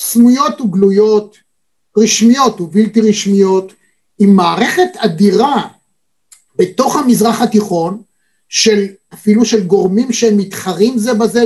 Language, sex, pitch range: Hebrew, male, 200-245 Hz